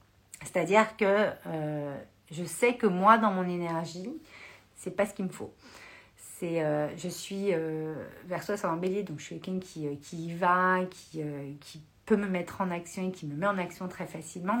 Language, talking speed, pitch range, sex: French, 205 wpm, 165-210 Hz, female